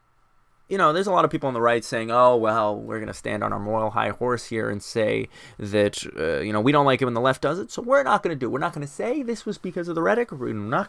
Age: 20-39